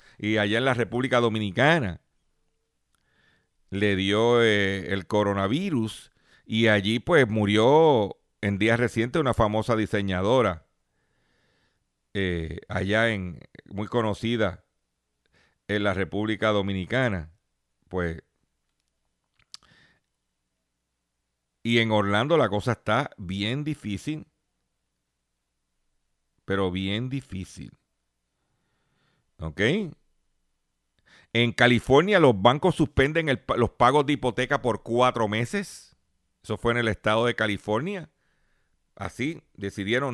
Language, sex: Spanish, male